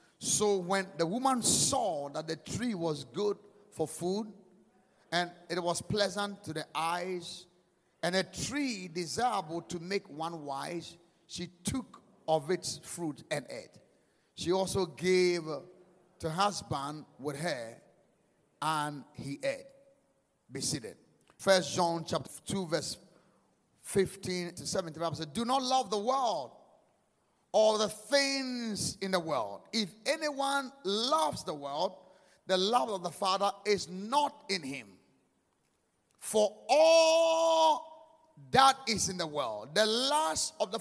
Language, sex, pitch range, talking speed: English, male, 175-240 Hz, 130 wpm